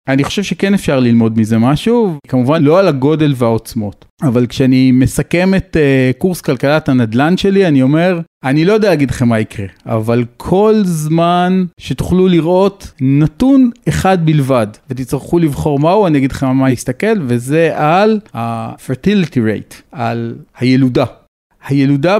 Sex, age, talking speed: male, 40-59, 145 wpm